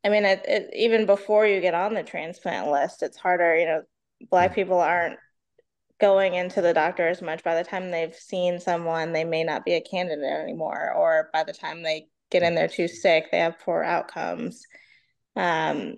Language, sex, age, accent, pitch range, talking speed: English, female, 20-39, American, 160-195 Hz, 200 wpm